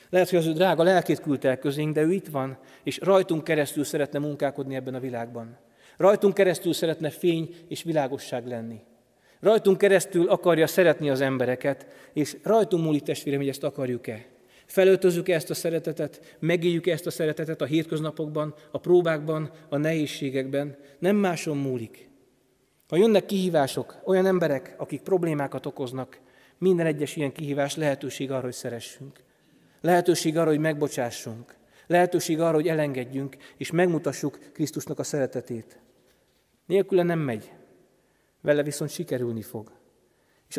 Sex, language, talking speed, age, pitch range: male, Hungarian, 140 wpm, 30-49, 135-165 Hz